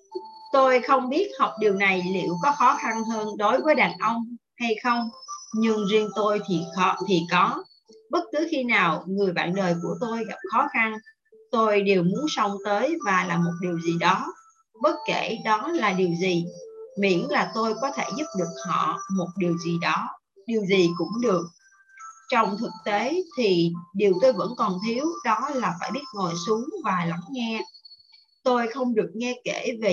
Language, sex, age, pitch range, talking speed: Vietnamese, female, 30-49, 190-275 Hz, 185 wpm